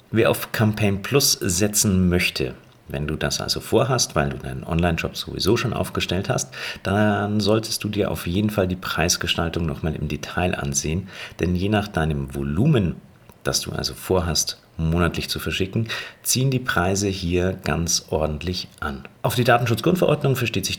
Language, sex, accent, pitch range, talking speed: German, male, German, 80-115 Hz, 160 wpm